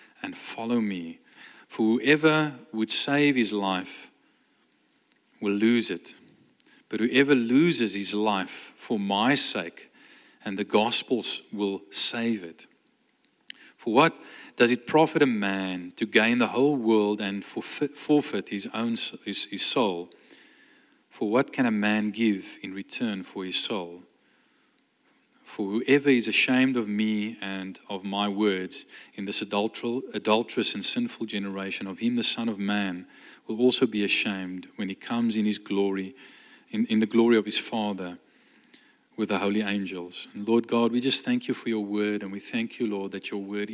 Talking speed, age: 160 wpm, 40-59